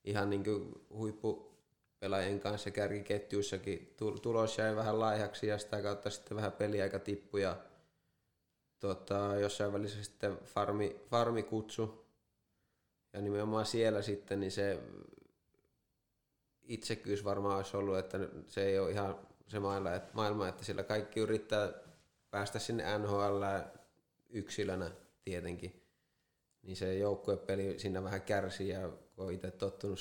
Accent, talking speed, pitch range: native, 120 wpm, 95-105 Hz